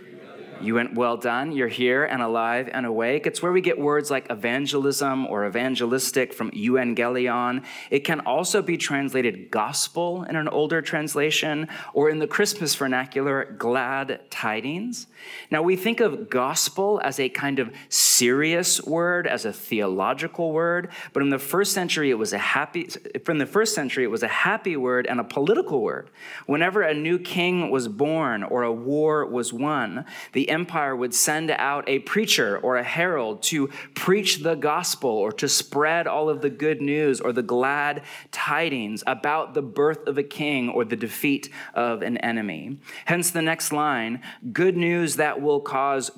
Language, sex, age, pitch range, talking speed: English, male, 30-49, 125-165 Hz, 175 wpm